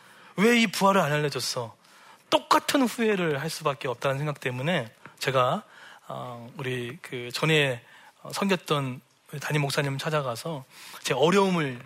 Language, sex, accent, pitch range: Korean, male, native, 130-185 Hz